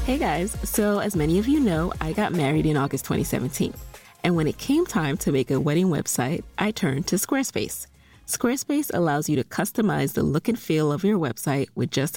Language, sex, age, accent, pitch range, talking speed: English, female, 30-49, American, 145-205 Hz, 205 wpm